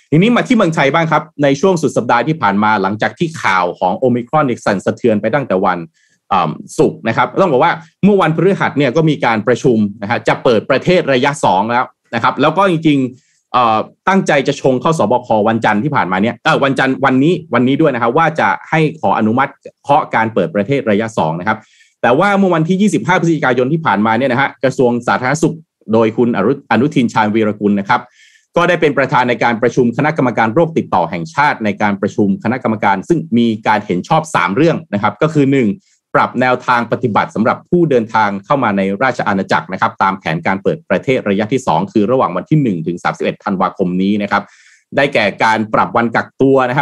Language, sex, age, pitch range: Thai, male, 30-49, 110-160 Hz